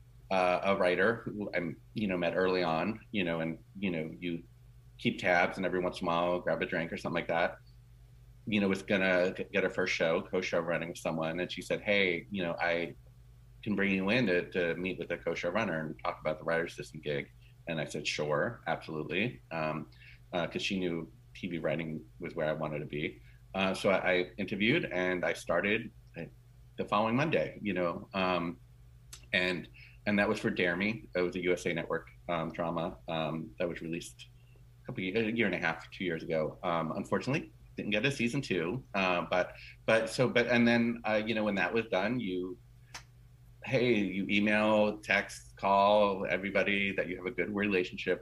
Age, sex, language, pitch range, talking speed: 30-49, male, English, 85-120 Hz, 205 wpm